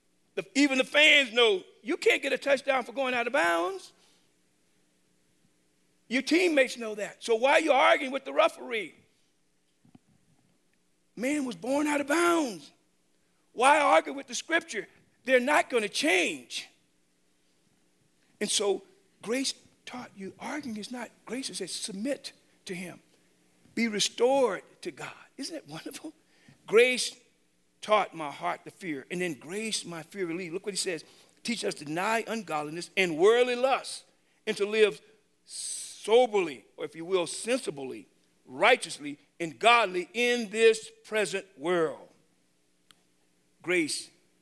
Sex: male